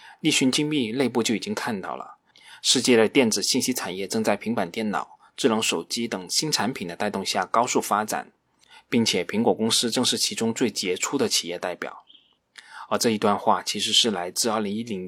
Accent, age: native, 20-39